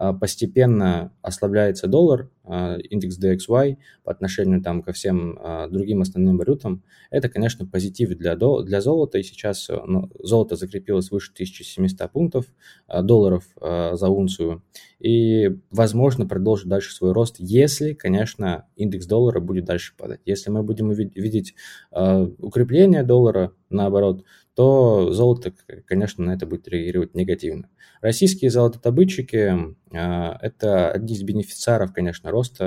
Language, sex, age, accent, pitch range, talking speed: Russian, male, 20-39, native, 90-115 Hz, 135 wpm